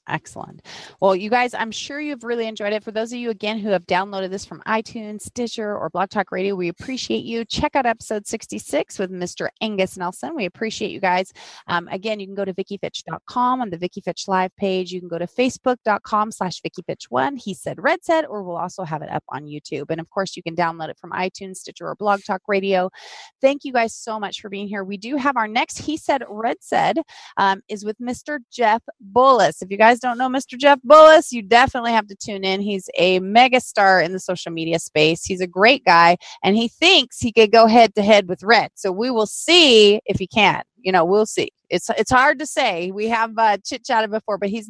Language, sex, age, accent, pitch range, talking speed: English, female, 30-49, American, 190-240 Hz, 230 wpm